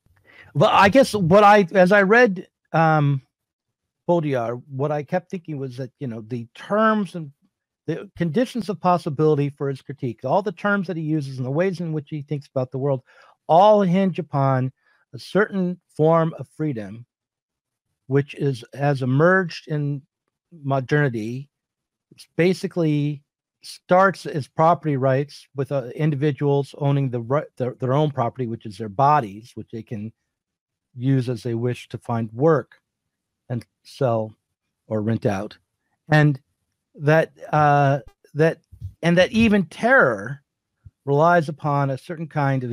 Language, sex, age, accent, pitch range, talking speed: English, male, 50-69, American, 130-170 Hz, 150 wpm